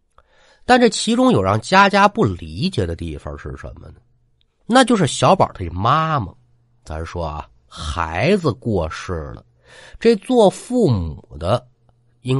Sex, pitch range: male, 90-145 Hz